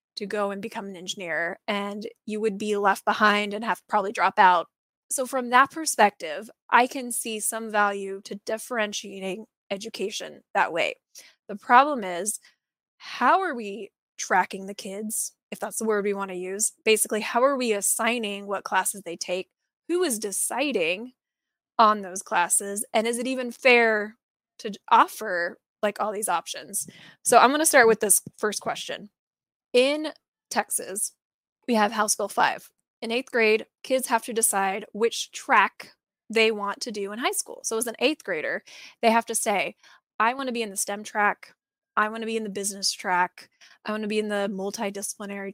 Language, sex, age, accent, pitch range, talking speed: English, female, 20-39, American, 200-245 Hz, 185 wpm